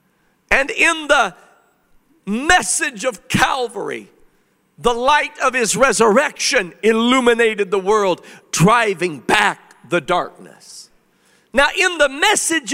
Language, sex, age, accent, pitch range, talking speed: English, male, 50-69, American, 200-285 Hz, 105 wpm